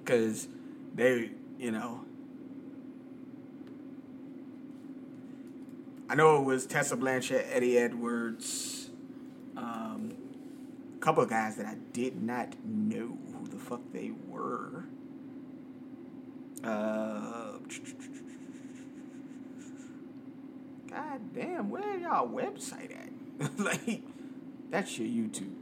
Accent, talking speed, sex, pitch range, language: American, 90 wpm, male, 265-275 Hz, English